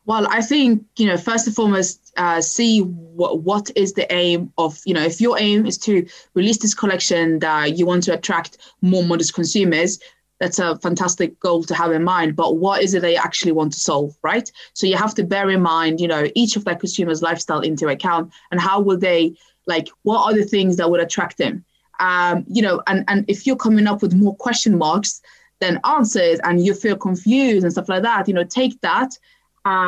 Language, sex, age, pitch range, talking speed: English, female, 20-39, 170-210 Hz, 215 wpm